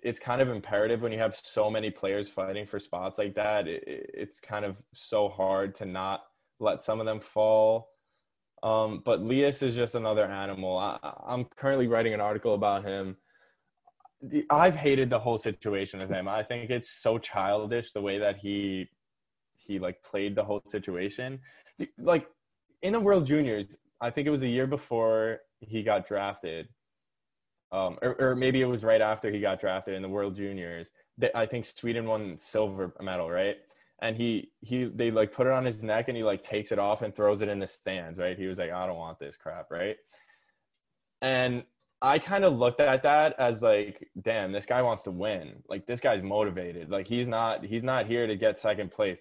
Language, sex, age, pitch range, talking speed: English, male, 10-29, 100-125 Hz, 200 wpm